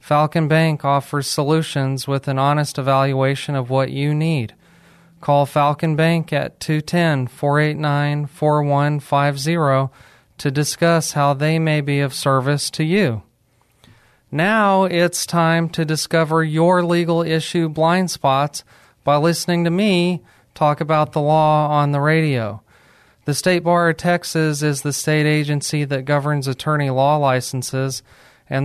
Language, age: English, 30-49